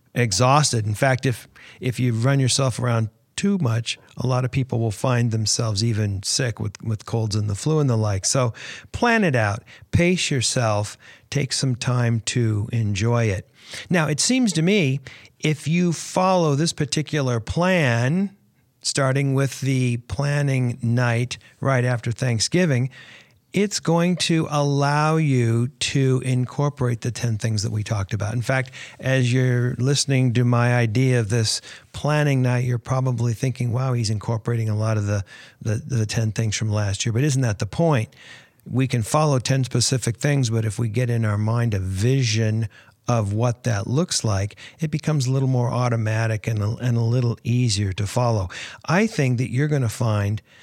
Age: 40-59